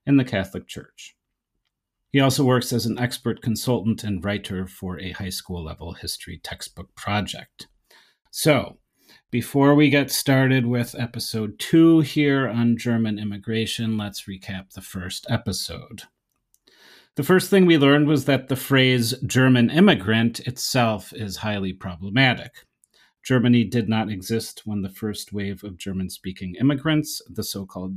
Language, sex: English, male